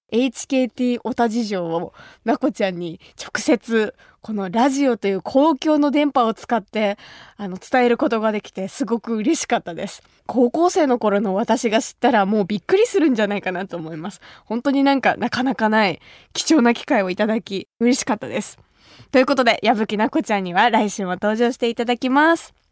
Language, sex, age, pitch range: Japanese, female, 20-39, 200-275 Hz